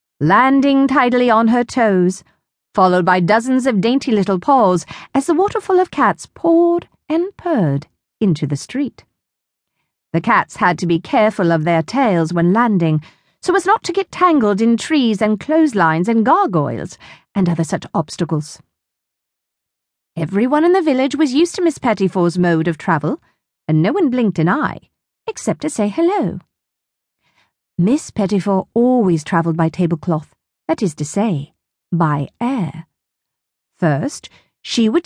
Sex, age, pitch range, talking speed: female, 40-59, 165-275 Hz, 150 wpm